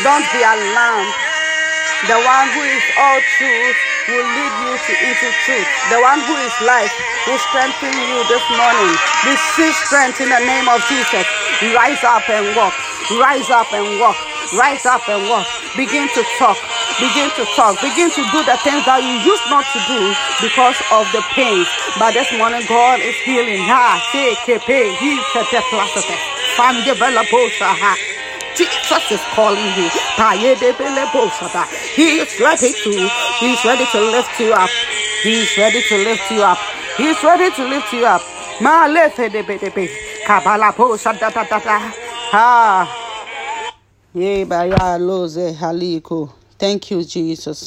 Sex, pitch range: female, 190-275 Hz